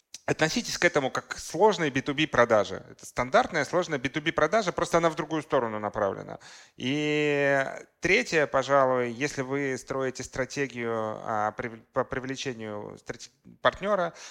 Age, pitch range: 30-49, 110-135 Hz